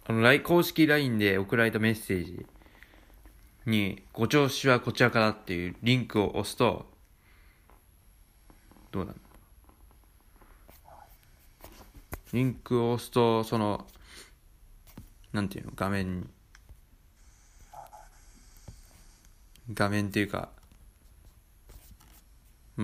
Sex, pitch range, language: male, 85-115 Hz, Japanese